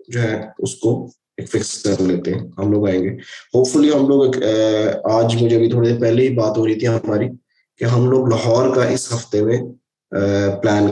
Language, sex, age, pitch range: Urdu, male, 20-39, 110-130 Hz